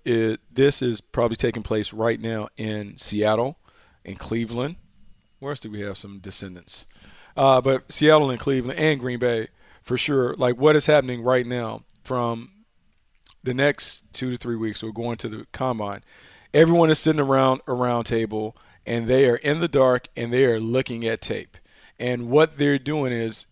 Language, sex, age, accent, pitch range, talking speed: English, male, 40-59, American, 115-140 Hz, 180 wpm